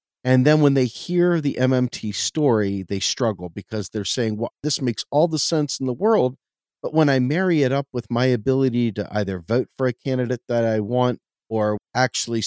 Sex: male